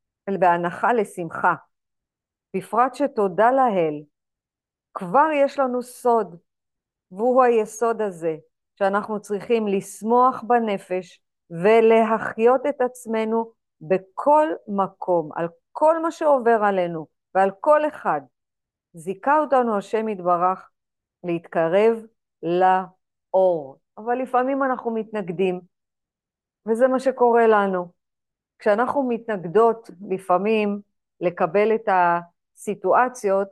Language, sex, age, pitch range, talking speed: Hebrew, female, 50-69, 175-225 Hz, 90 wpm